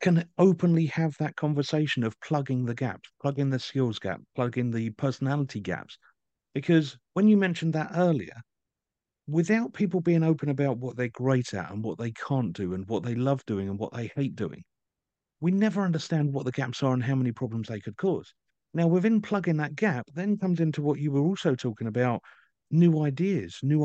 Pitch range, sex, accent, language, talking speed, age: 125-185 Hz, male, British, English, 195 wpm, 50-69